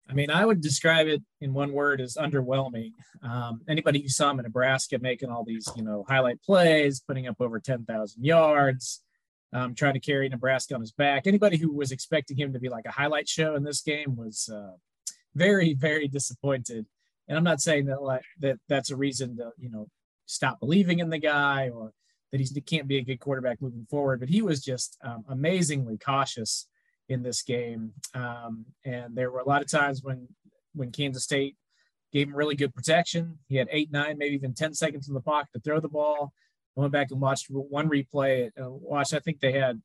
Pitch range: 125-155 Hz